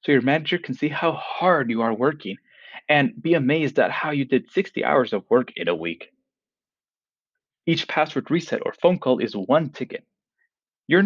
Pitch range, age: 140-205 Hz, 30-49